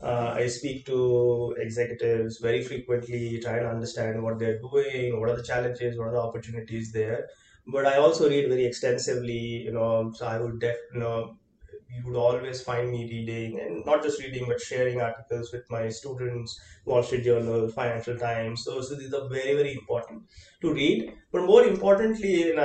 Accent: Indian